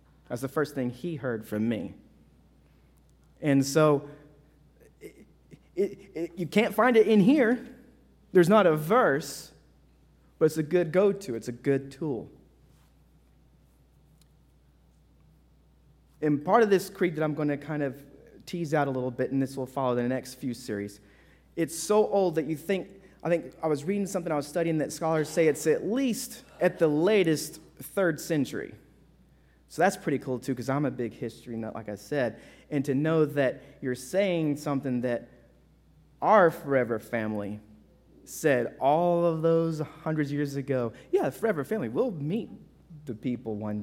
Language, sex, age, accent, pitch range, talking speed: English, male, 30-49, American, 125-175 Hz, 170 wpm